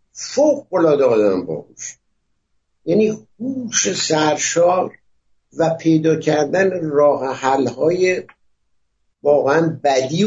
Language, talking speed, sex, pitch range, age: Persian, 80 wpm, male, 135-190 Hz, 60-79